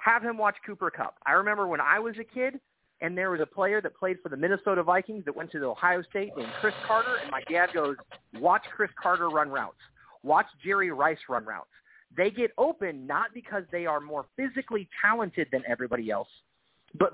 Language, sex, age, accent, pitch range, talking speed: English, male, 30-49, American, 160-215 Hz, 210 wpm